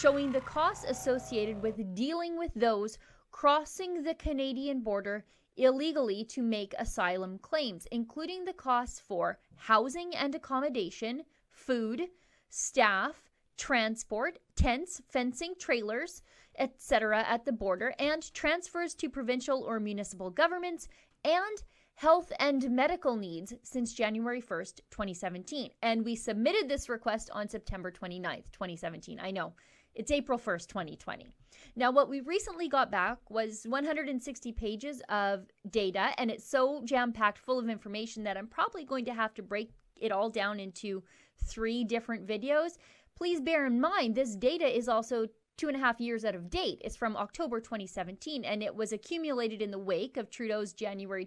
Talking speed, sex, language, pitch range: 150 wpm, female, English, 215-285 Hz